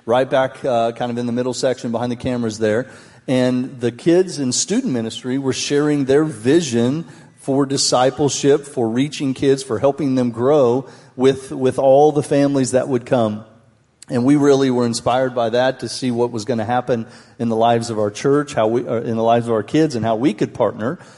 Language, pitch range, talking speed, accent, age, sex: English, 120-140 Hz, 210 wpm, American, 40-59, male